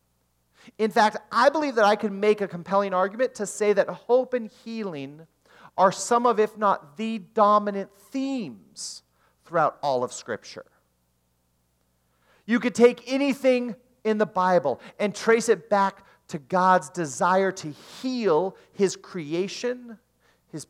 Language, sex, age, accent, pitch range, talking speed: English, male, 40-59, American, 140-220 Hz, 140 wpm